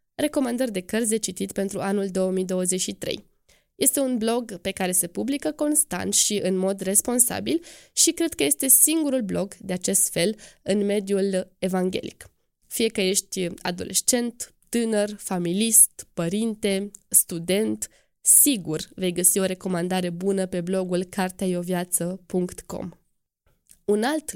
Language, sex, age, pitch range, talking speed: Romanian, female, 20-39, 185-230 Hz, 125 wpm